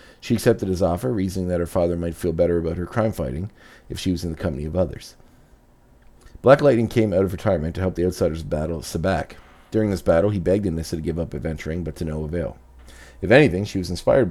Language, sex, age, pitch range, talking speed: English, male, 40-59, 85-105 Hz, 225 wpm